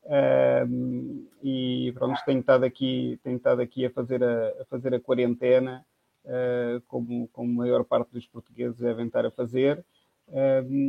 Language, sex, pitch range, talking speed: Portuguese, male, 125-135 Hz, 165 wpm